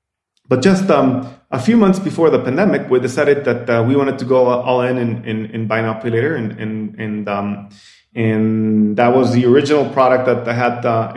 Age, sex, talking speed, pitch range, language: 20-39, male, 210 wpm, 115-150 Hz, English